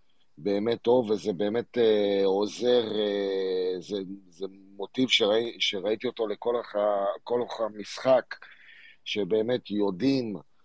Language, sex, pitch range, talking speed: Hebrew, male, 95-115 Hz, 100 wpm